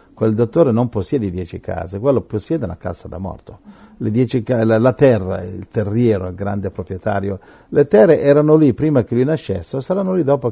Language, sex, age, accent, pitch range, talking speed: Italian, male, 50-69, native, 95-120 Hz, 190 wpm